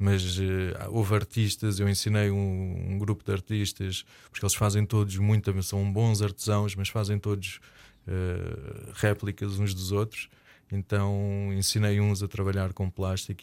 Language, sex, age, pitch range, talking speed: Portuguese, male, 20-39, 95-110 Hz, 150 wpm